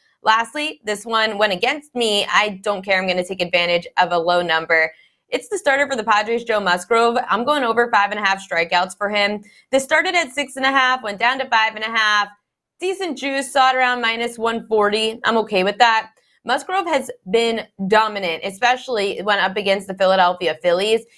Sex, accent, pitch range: female, American, 190-240 Hz